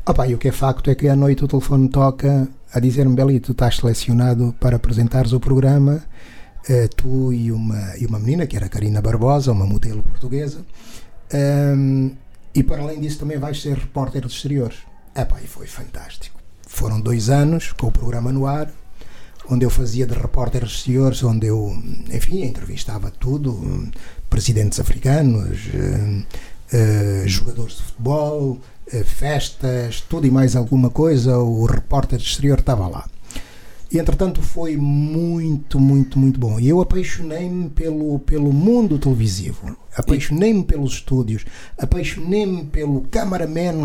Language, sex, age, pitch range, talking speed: Portuguese, male, 50-69, 120-145 Hz, 145 wpm